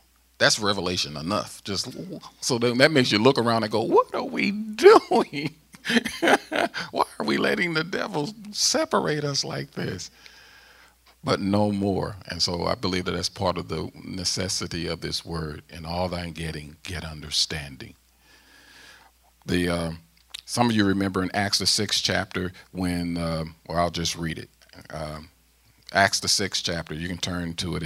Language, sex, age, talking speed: English, male, 40-59, 170 wpm